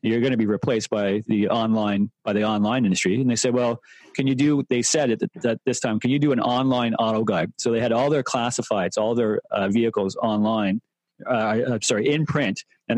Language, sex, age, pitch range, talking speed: English, male, 40-59, 115-145 Hz, 230 wpm